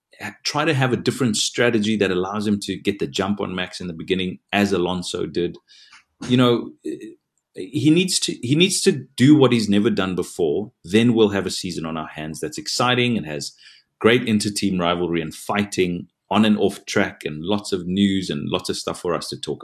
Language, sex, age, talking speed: English, male, 30-49, 200 wpm